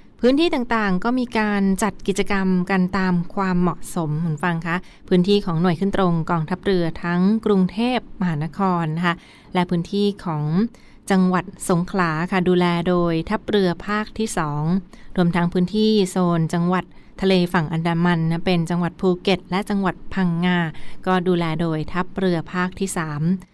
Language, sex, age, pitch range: Thai, female, 20-39, 175-200 Hz